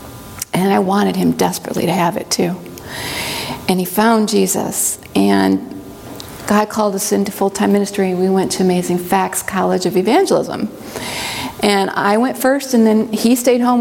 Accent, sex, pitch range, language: American, female, 190-220 Hz, English